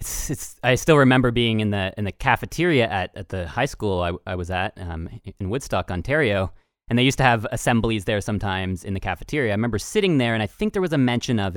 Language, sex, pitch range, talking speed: English, male, 105-140 Hz, 245 wpm